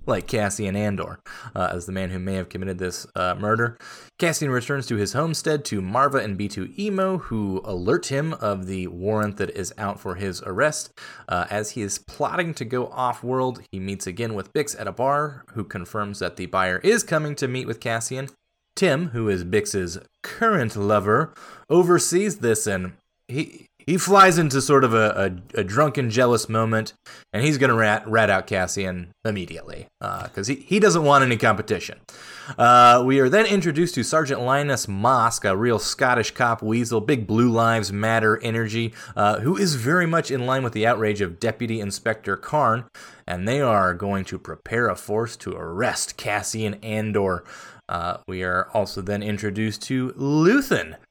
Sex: male